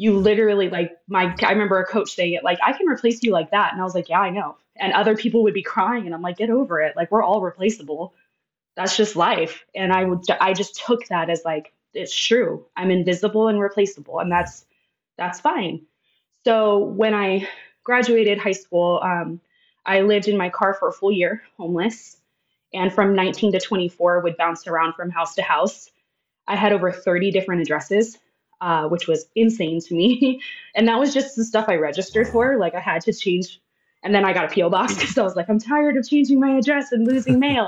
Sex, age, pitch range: female, 20-39, 175-225 Hz